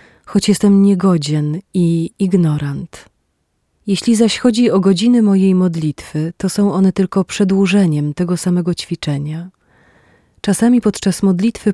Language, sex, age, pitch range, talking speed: Polish, female, 30-49, 165-200 Hz, 120 wpm